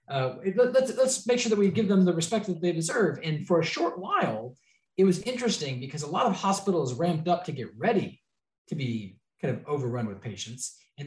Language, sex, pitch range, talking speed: English, male, 125-175 Hz, 215 wpm